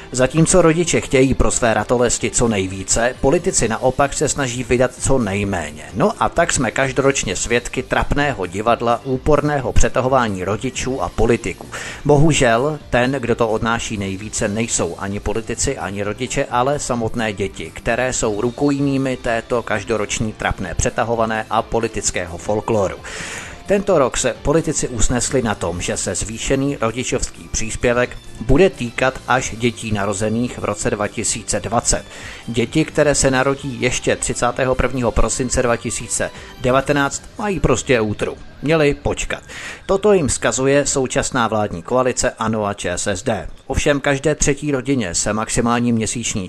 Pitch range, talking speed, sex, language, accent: 110-135 Hz, 130 wpm, male, Czech, native